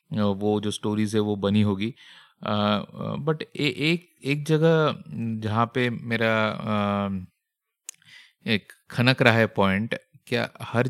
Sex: male